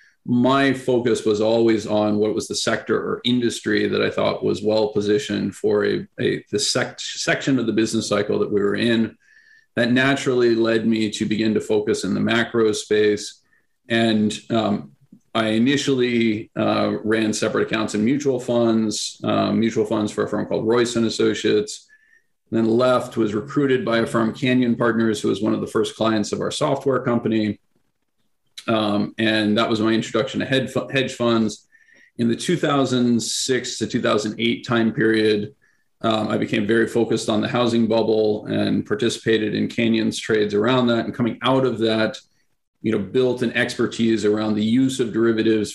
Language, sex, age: English, male, 40-59